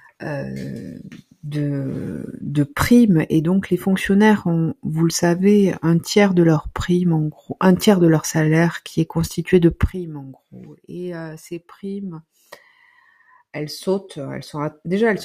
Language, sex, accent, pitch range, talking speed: French, female, French, 150-185 Hz, 150 wpm